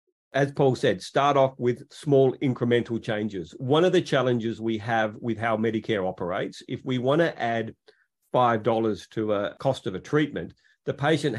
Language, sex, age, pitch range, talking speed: English, male, 40-59, 110-140 Hz, 175 wpm